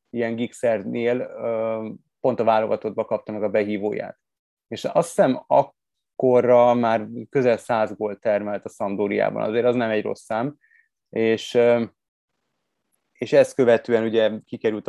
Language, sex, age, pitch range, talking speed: Hungarian, male, 20-39, 105-120 Hz, 120 wpm